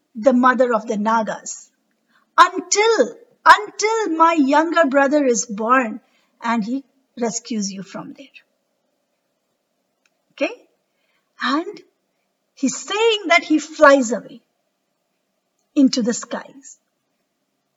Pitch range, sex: 250-315 Hz, female